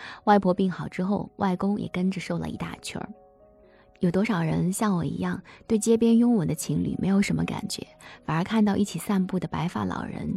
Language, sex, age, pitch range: Chinese, female, 20-39, 165-205 Hz